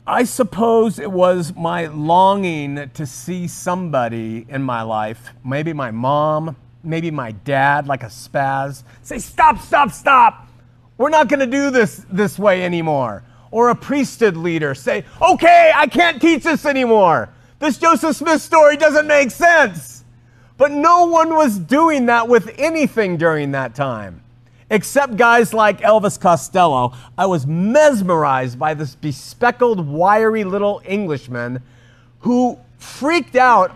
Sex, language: male, English